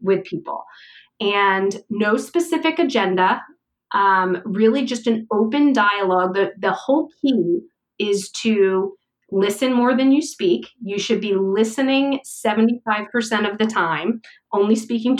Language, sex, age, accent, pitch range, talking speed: English, female, 30-49, American, 195-260 Hz, 130 wpm